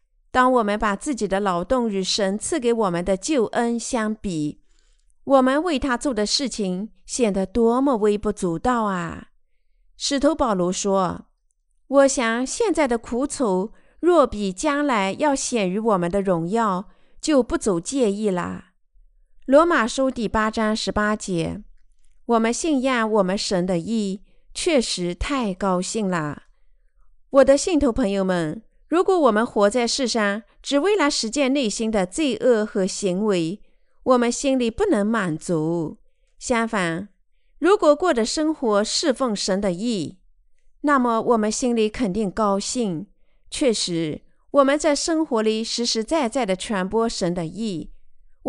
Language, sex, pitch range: Chinese, female, 195-275 Hz